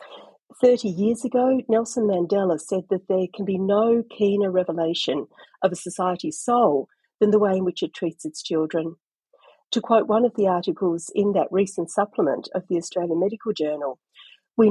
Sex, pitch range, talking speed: female, 175-220 Hz, 170 wpm